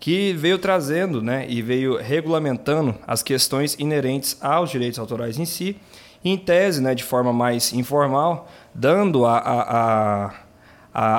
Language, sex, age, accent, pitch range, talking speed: Portuguese, male, 20-39, Brazilian, 120-160 Hz, 145 wpm